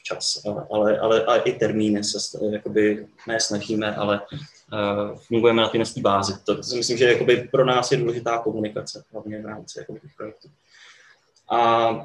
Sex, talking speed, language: male, 155 wpm, Czech